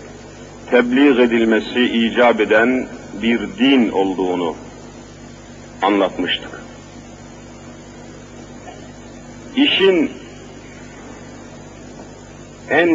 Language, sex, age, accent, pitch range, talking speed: Turkish, male, 50-69, native, 125-205 Hz, 45 wpm